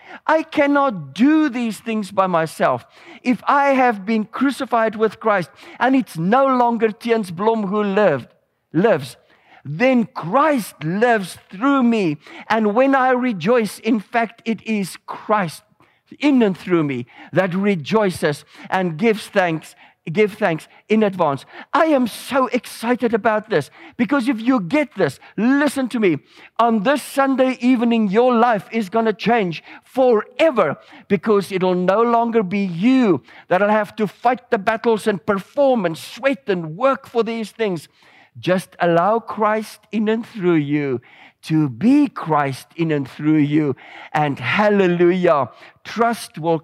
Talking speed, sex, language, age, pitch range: 150 wpm, male, English, 50-69, 180-245 Hz